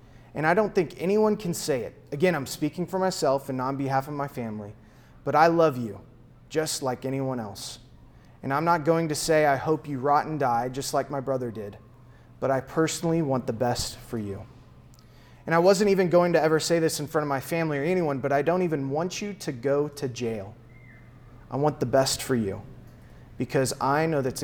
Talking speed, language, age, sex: 220 wpm, English, 30-49, male